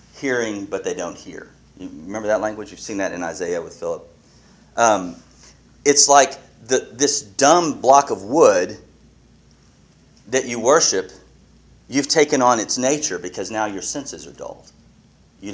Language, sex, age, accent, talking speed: English, male, 40-59, American, 155 wpm